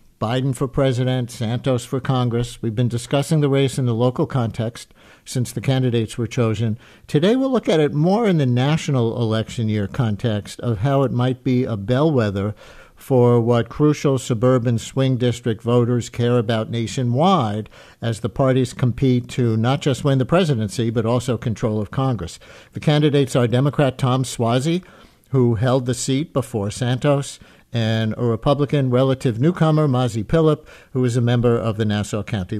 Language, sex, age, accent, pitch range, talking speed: English, male, 60-79, American, 120-140 Hz, 170 wpm